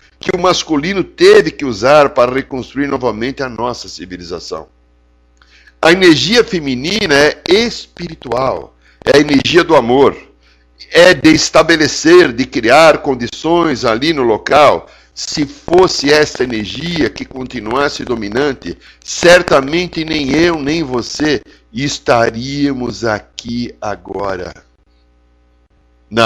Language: Portuguese